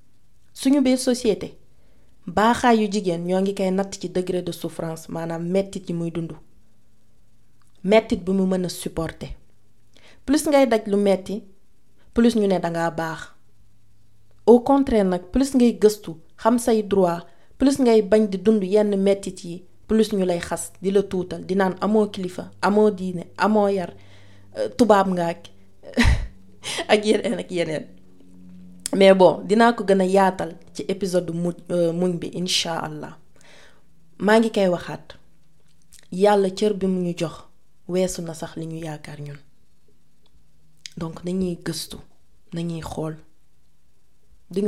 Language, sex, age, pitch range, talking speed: French, female, 30-49, 160-205 Hz, 90 wpm